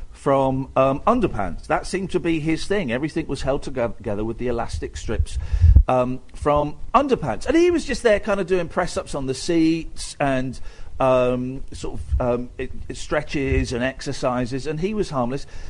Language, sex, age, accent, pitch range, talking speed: English, male, 50-69, British, 110-170 Hz, 170 wpm